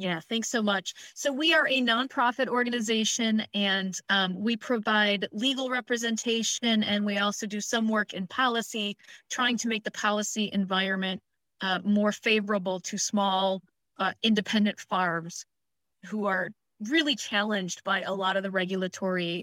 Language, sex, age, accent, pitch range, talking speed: English, female, 30-49, American, 190-230 Hz, 150 wpm